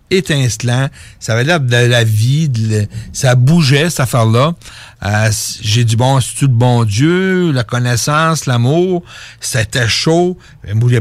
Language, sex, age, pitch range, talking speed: French, male, 60-79, 115-155 Hz, 145 wpm